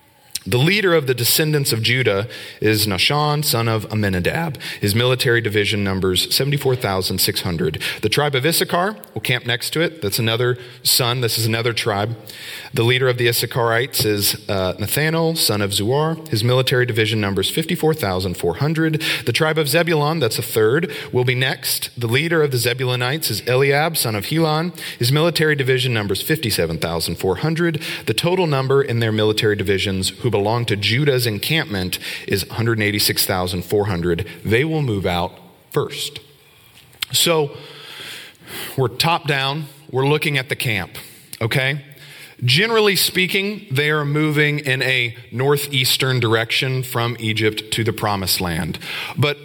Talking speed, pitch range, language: 145 wpm, 110-150 Hz, English